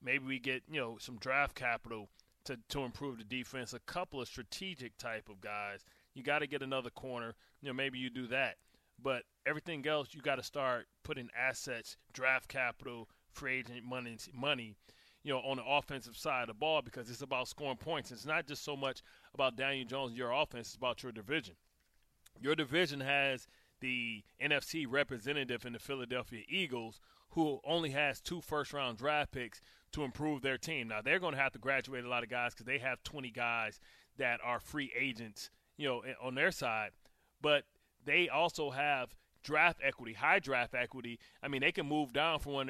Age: 30-49